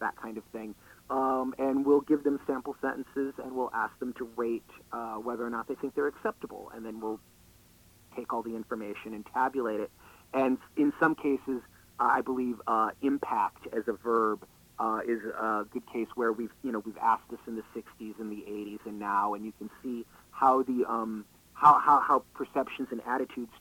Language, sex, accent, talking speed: English, male, American, 200 wpm